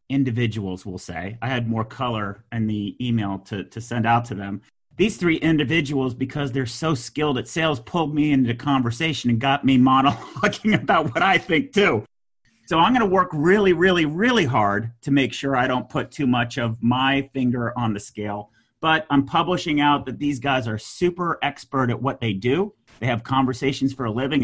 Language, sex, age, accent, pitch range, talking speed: English, male, 40-59, American, 120-150 Hz, 200 wpm